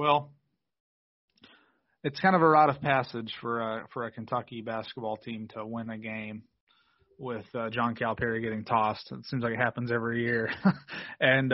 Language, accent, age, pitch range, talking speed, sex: English, American, 30-49, 120-145 Hz, 165 wpm, male